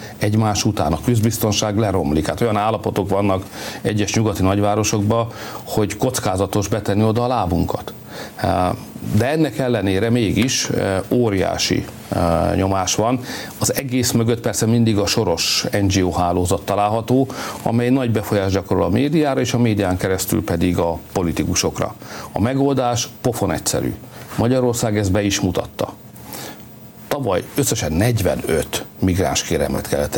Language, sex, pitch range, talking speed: Hungarian, male, 95-120 Hz, 125 wpm